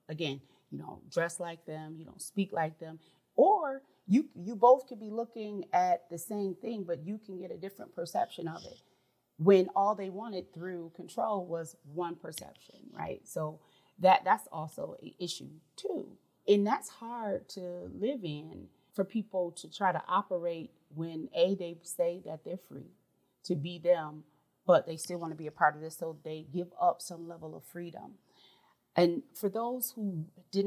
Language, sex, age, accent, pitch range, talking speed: English, female, 30-49, American, 160-195 Hz, 185 wpm